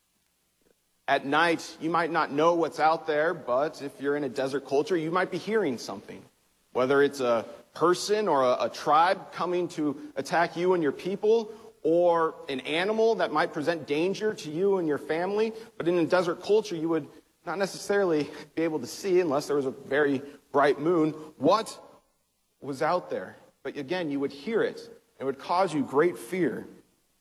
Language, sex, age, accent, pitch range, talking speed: English, male, 40-59, American, 145-175 Hz, 185 wpm